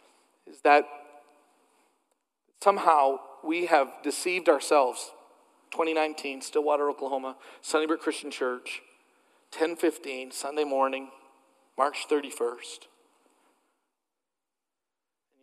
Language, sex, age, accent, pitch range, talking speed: English, male, 40-59, American, 135-160 Hz, 70 wpm